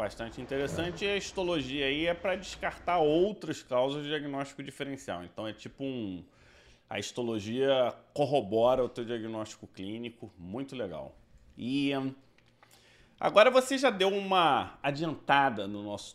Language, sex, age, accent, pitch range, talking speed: Portuguese, male, 30-49, Brazilian, 115-165 Hz, 135 wpm